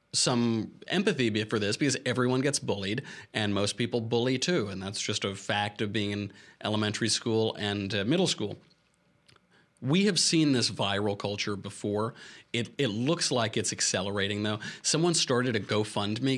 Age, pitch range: 30-49, 105-145 Hz